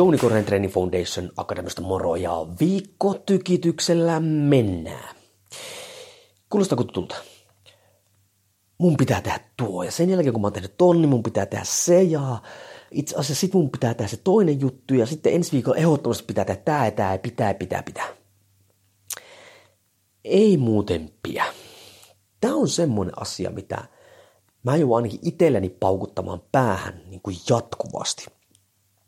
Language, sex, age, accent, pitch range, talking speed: Finnish, male, 30-49, native, 95-150 Hz, 135 wpm